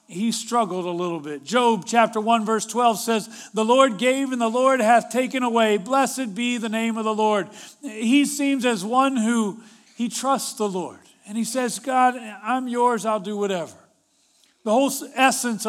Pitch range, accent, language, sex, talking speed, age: 210-255 Hz, American, English, male, 185 wpm, 40-59